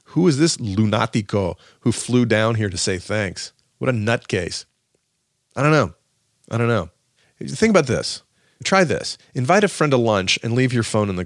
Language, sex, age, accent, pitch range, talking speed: English, male, 40-59, American, 95-120 Hz, 190 wpm